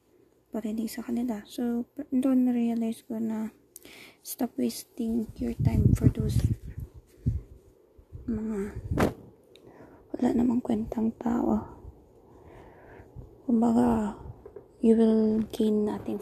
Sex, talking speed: female, 80 wpm